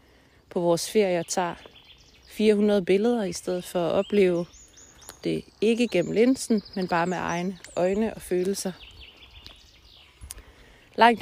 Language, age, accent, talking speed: Danish, 30-49, native, 125 wpm